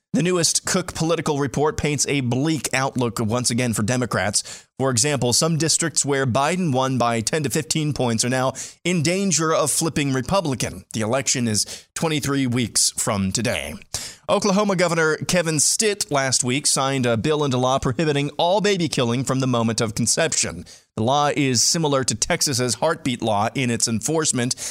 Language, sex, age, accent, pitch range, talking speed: English, male, 30-49, American, 120-155 Hz, 170 wpm